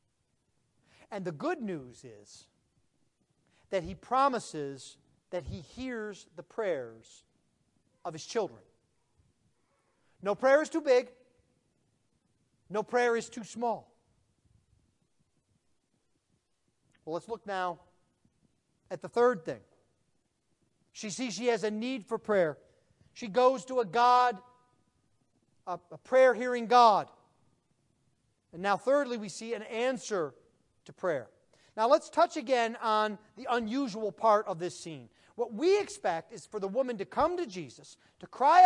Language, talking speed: English, 130 wpm